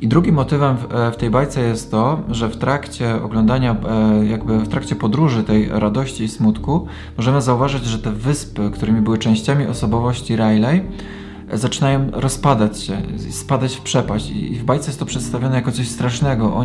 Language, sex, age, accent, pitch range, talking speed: Polish, male, 20-39, native, 110-135 Hz, 165 wpm